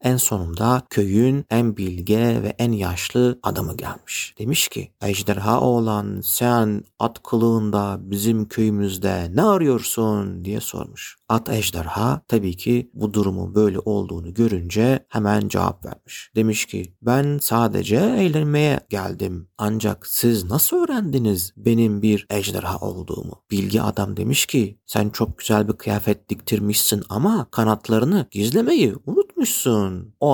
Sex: male